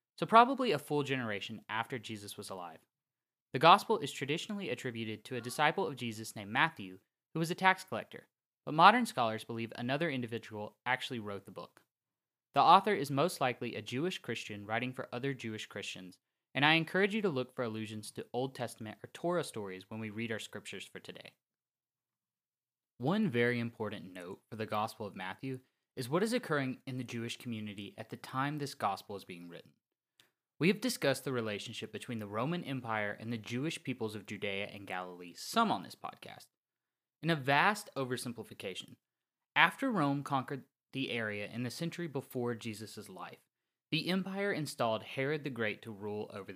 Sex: male